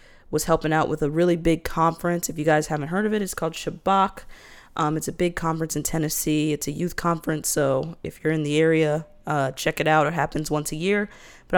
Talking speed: 235 wpm